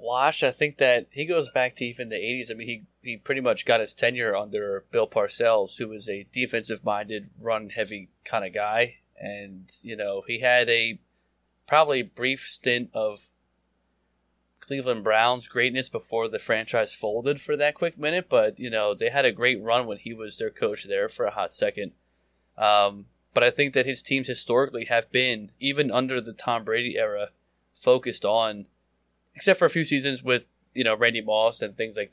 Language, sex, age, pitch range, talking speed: English, male, 20-39, 105-130 Hz, 190 wpm